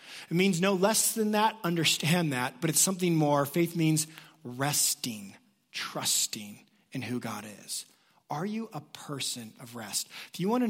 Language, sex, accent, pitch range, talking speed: English, male, American, 130-175 Hz, 170 wpm